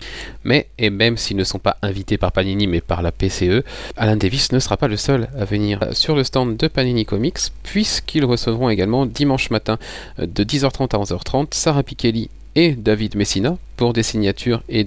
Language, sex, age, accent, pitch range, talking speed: French, male, 30-49, French, 95-120 Hz, 190 wpm